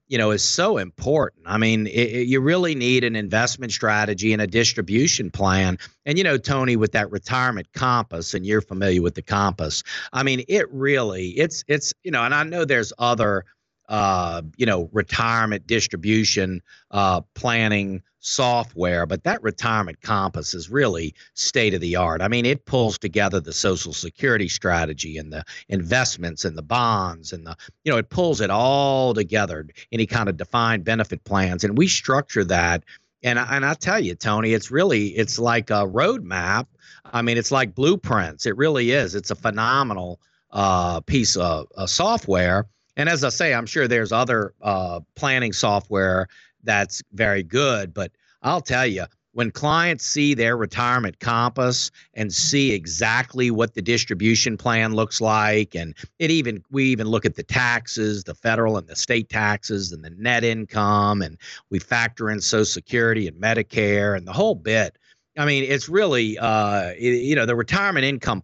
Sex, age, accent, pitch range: male, 50-69, American, 95-125 Hz